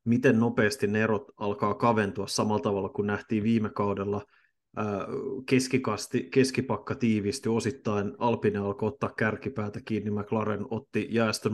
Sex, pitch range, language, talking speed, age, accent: male, 105-120 Hz, Finnish, 125 wpm, 30-49, native